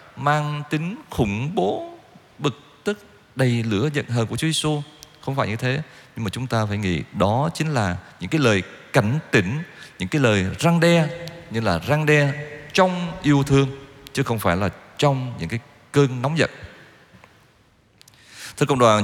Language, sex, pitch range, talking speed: Vietnamese, male, 110-150 Hz, 175 wpm